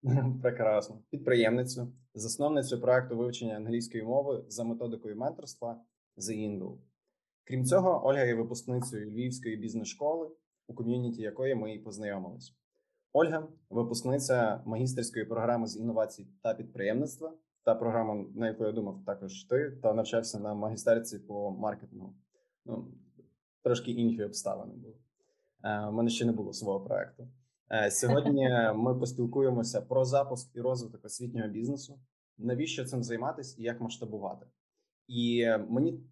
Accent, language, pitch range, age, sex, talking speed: native, Ukrainian, 110-125 Hz, 20-39, male, 130 wpm